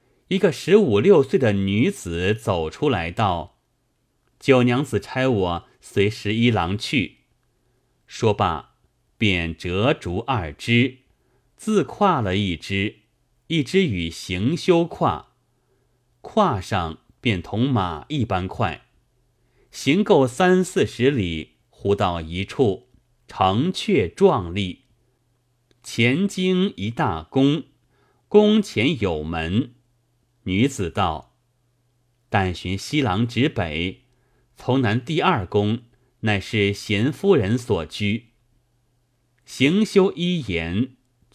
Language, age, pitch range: Chinese, 30-49, 100-135 Hz